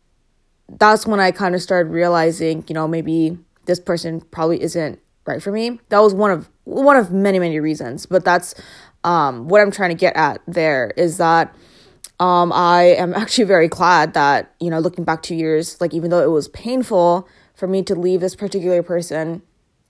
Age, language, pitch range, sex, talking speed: 20-39, English, 165-190 Hz, female, 195 wpm